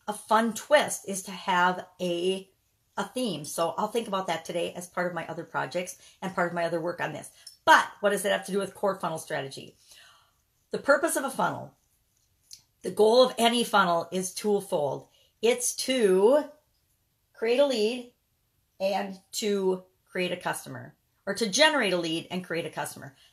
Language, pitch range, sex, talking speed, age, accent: English, 170-210 Hz, female, 185 wpm, 40-59, American